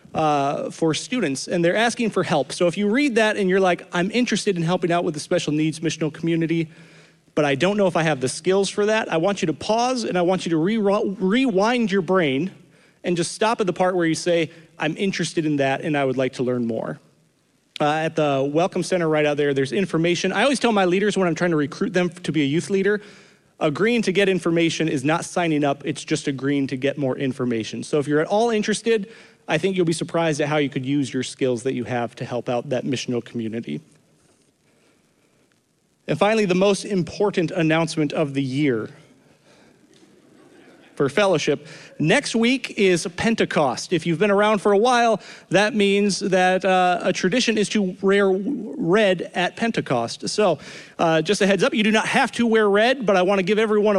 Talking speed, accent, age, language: 215 wpm, American, 30-49, English